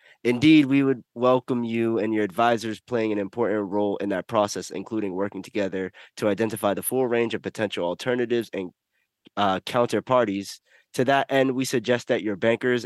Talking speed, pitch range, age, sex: 175 wpm, 100-130 Hz, 20-39, male